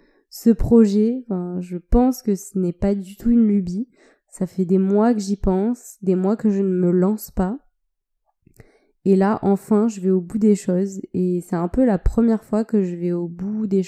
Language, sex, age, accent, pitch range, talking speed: French, female, 20-39, French, 185-215 Hz, 210 wpm